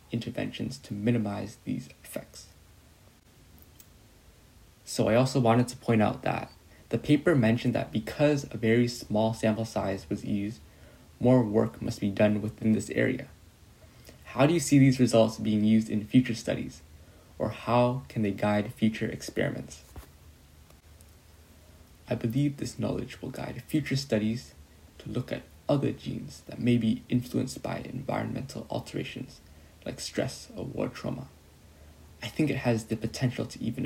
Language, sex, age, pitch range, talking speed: English, male, 20-39, 80-125 Hz, 150 wpm